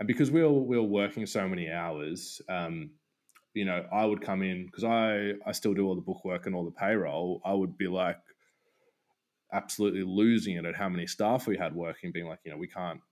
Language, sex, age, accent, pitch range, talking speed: English, male, 20-39, Australian, 100-125 Hz, 225 wpm